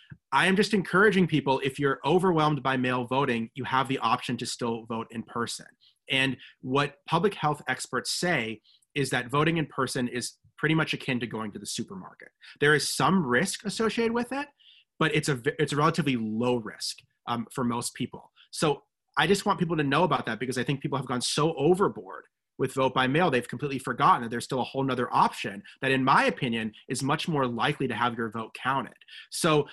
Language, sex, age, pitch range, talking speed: English, male, 30-49, 120-160 Hz, 210 wpm